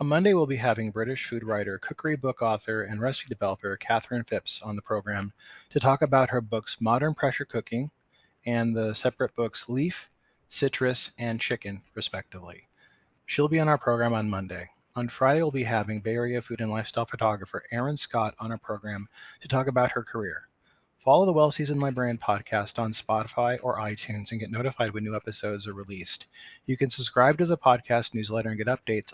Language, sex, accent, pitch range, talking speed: English, male, American, 110-135 Hz, 190 wpm